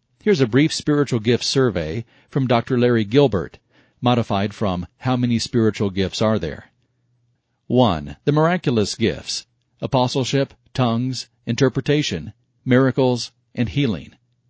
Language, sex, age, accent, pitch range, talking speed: English, male, 50-69, American, 110-130 Hz, 115 wpm